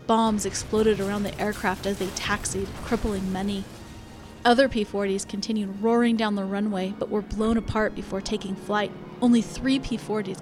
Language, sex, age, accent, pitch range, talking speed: English, female, 30-49, American, 195-230 Hz, 155 wpm